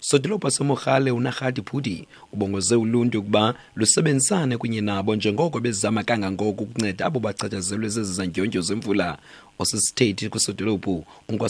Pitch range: 110-140 Hz